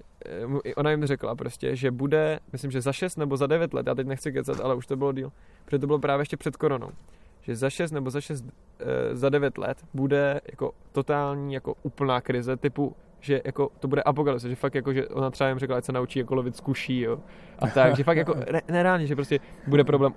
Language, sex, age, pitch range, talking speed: Czech, male, 20-39, 130-140 Hz, 230 wpm